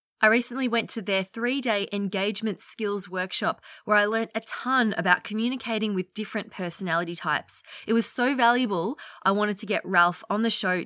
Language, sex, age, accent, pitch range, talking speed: English, female, 20-39, Australian, 185-235 Hz, 175 wpm